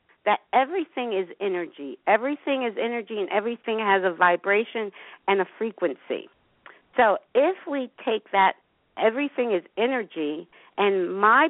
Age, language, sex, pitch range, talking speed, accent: 50-69, English, female, 190-220 Hz, 130 wpm, American